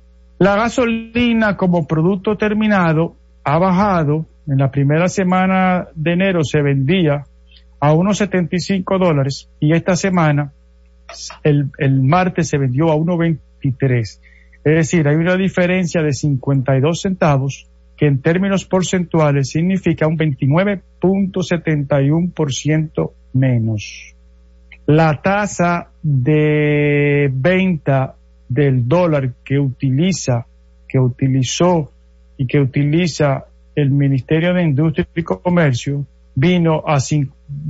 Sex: male